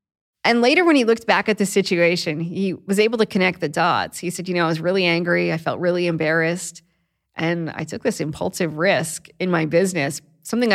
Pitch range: 160-200 Hz